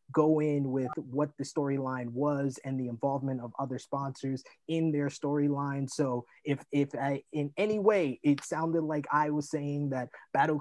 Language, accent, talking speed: English, American, 175 wpm